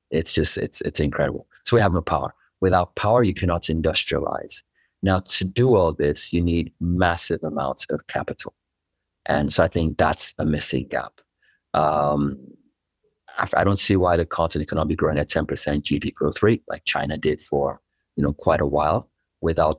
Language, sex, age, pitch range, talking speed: English, male, 30-49, 75-95 Hz, 180 wpm